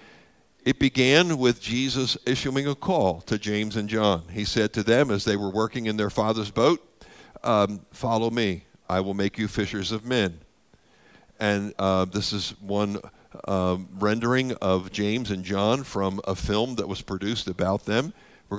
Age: 60-79